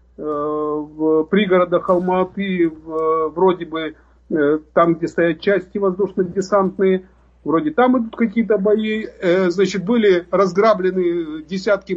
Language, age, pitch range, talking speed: Russian, 50-69, 170-215 Hz, 95 wpm